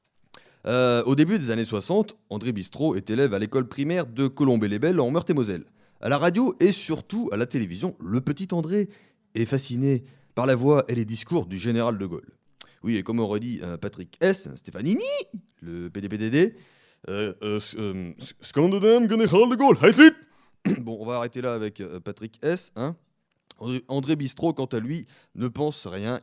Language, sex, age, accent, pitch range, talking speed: French, male, 30-49, French, 115-165 Hz, 170 wpm